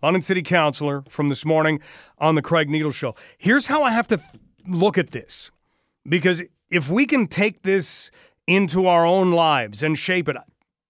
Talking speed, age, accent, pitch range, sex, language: 180 wpm, 40-59, American, 155-180 Hz, male, English